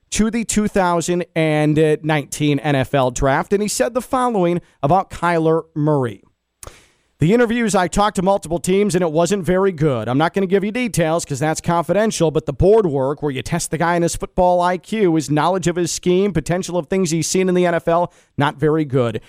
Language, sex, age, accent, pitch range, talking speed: English, male, 40-59, American, 150-200 Hz, 200 wpm